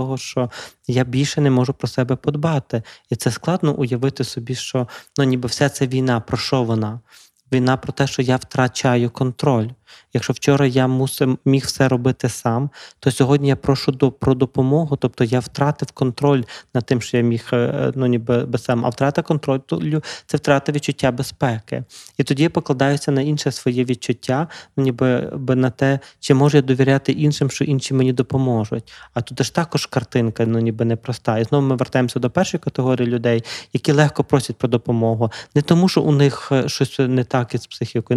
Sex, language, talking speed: male, Ukrainian, 180 wpm